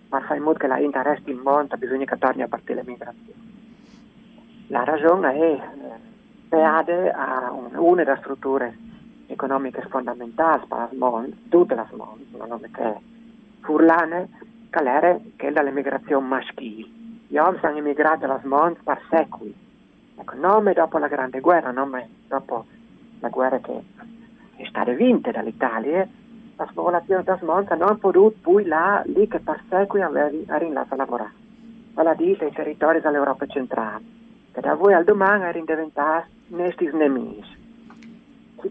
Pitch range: 140-230 Hz